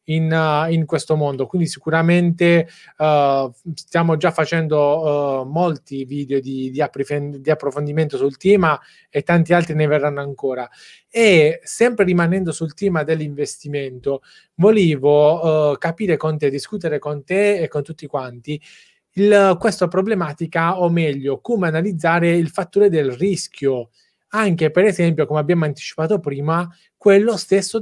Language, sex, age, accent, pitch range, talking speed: Italian, male, 20-39, native, 145-185 Hz, 125 wpm